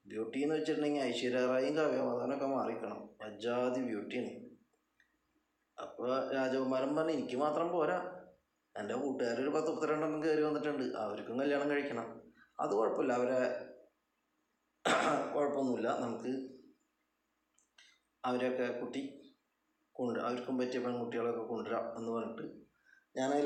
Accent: native